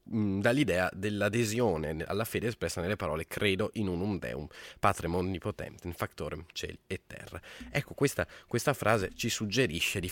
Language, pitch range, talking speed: Italian, 85-105 Hz, 140 wpm